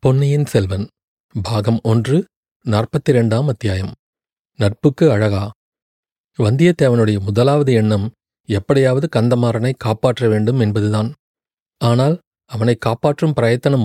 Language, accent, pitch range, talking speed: Tamil, native, 110-135 Hz, 85 wpm